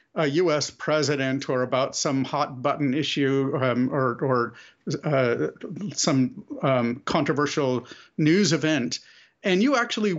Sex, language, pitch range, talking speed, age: male, English, 135-185 Hz, 125 wpm, 50-69